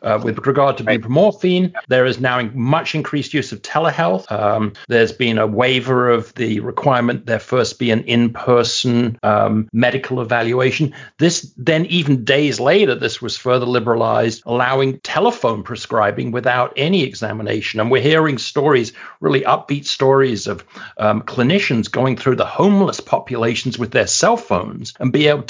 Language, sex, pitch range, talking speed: English, male, 115-145 Hz, 155 wpm